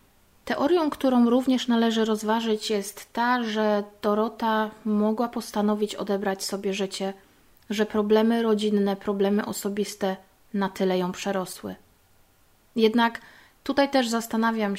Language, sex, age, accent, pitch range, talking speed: Polish, female, 30-49, native, 195-225 Hz, 110 wpm